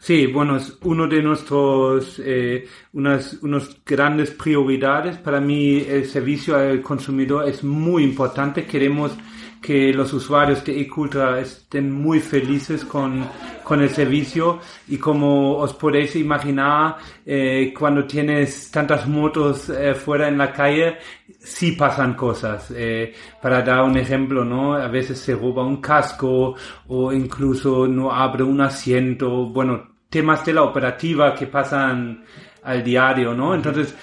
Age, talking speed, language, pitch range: 40-59, 140 wpm, Spanish, 135-150 Hz